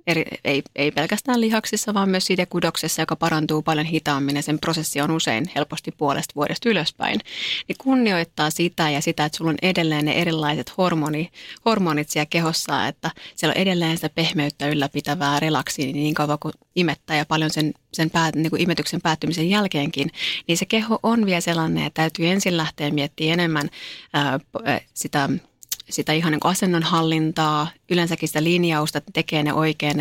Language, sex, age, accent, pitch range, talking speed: Finnish, female, 30-49, native, 150-175 Hz, 170 wpm